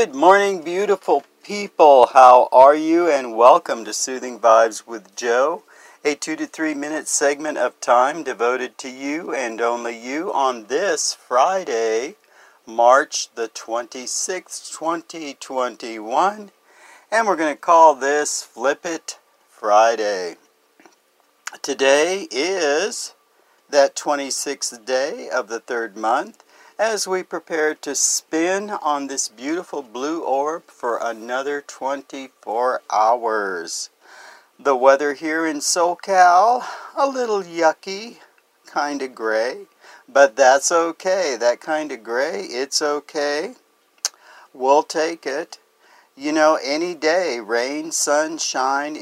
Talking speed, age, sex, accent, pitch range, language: 120 wpm, 50-69, male, American, 130-175 Hz, English